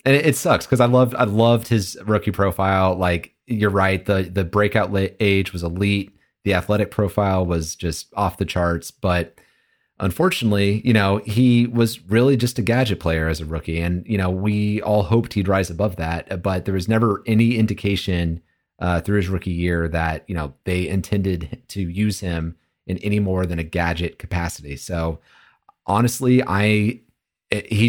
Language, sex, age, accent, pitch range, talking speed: English, male, 30-49, American, 90-110 Hz, 175 wpm